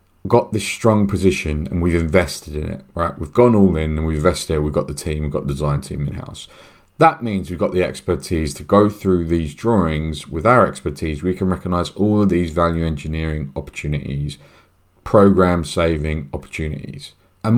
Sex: male